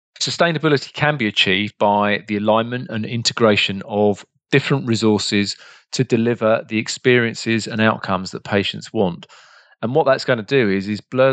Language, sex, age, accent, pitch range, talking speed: English, male, 40-59, British, 100-125 Hz, 160 wpm